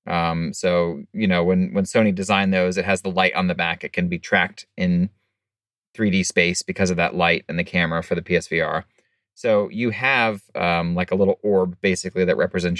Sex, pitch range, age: male, 90-110 Hz, 30-49